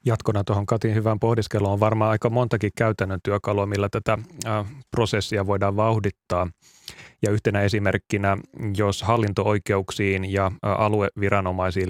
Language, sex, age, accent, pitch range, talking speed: Finnish, male, 30-49, native, 95-110 Hz, 120 wpm